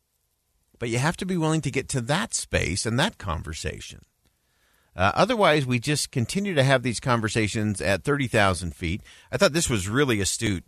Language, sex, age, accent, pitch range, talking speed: English, male, 50-69, American, 95-140 Hz, 180 wpm